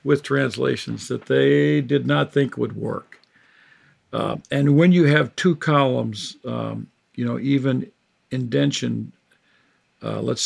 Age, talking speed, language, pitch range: 50-69, 130 wpm, English, 120-155 Hz